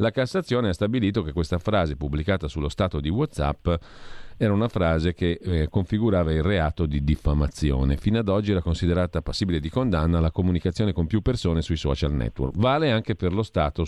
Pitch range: 80-105 Hz